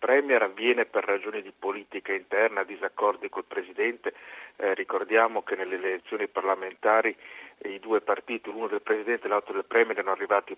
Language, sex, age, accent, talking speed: Italian, male, 50-69, native, 165 wpm